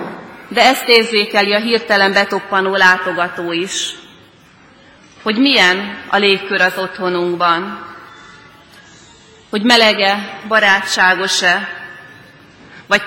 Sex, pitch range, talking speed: female, 185-220 Hz, 80 wpm